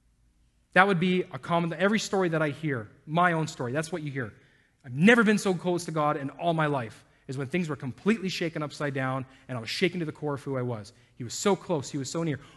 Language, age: English, 30-49